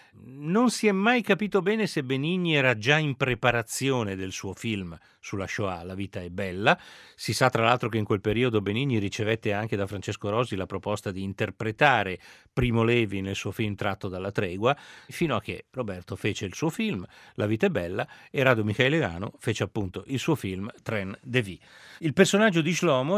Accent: native